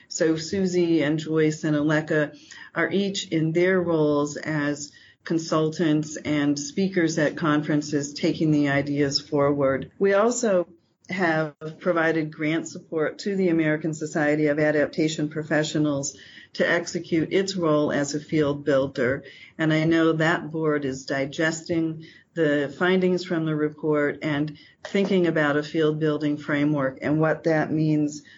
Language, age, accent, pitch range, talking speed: English, 40-59, American, 150-165 Hz, 135 wpm